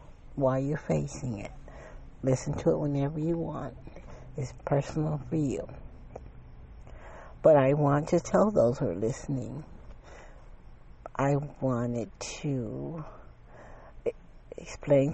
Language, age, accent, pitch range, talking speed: English, 60-79, American, 120-145 Hz, 105 wpm